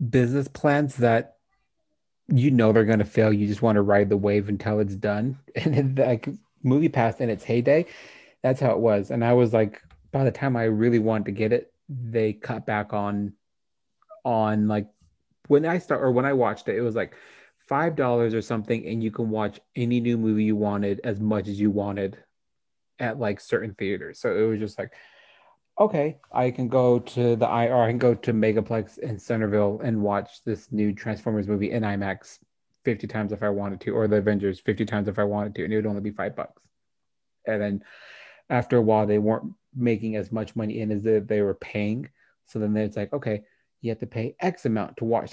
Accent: American